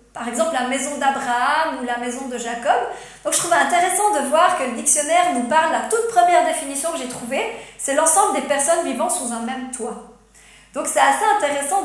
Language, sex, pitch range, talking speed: French, female, 250-325 Hz, 210 wpm